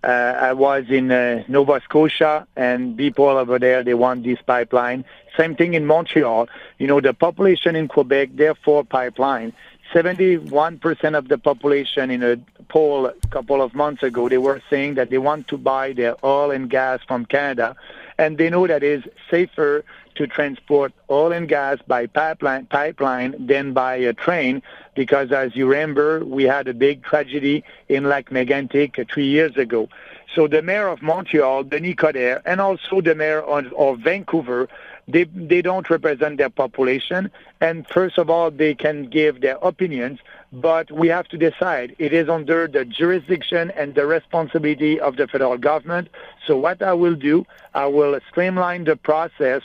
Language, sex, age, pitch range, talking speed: English, male, 50-69, 135-165 Hz, 170 wpm